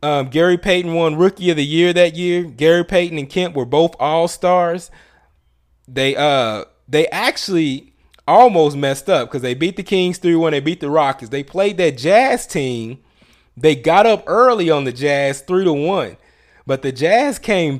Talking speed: 170 wpm